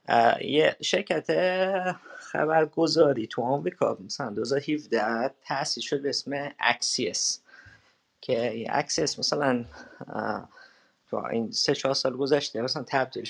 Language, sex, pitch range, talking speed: Persian, male, 115-155 Hz, 115 wpm